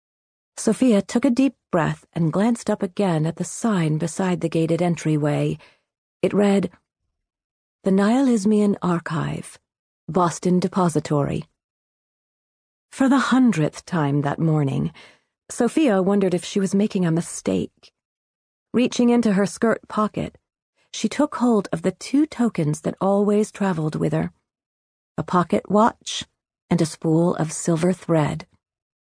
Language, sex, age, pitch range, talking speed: English, female, 40-59, 160-220 Hz, 130 wpm